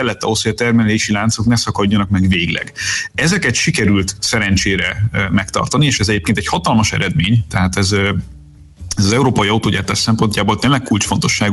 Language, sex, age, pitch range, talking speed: Hungarian, male, 30-49, 105-120 Hz, 150 wpm